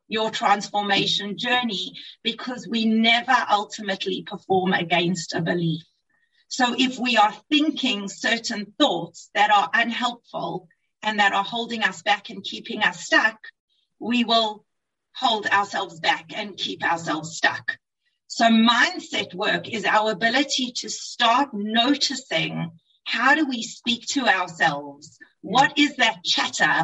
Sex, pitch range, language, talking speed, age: female, 195-255 Hz, English, 130 wpm, 40-59